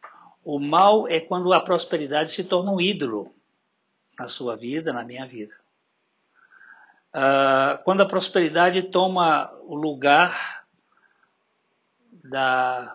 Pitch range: 135-170 Hz